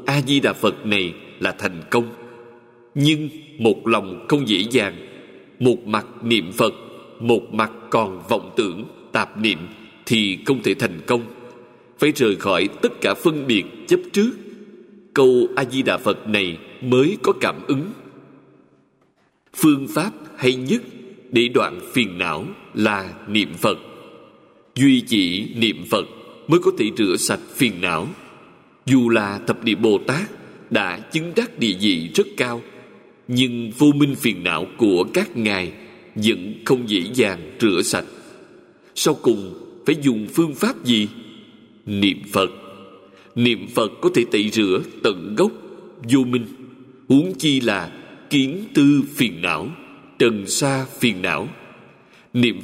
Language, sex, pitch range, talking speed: Vietnamese, male, 110-145 Hz, 140 wpm